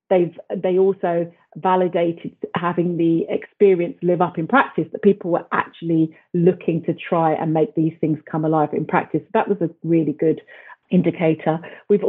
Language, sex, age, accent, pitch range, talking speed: English, female, 40-59, British, 160-180 Hz, 165 wpm